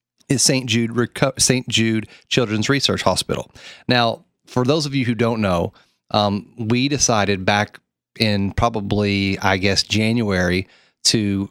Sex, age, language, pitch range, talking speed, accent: male, 30-49, English, 100-120 Hz, 135 wpm, American